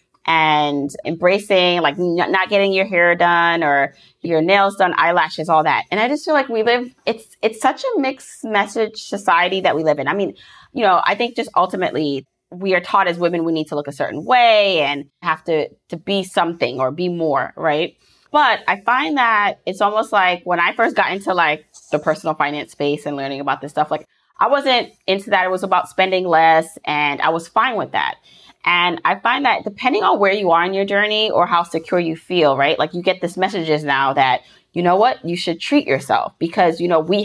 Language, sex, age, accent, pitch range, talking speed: English, female, 20-39, American, 160-205 Hz, 220 wpm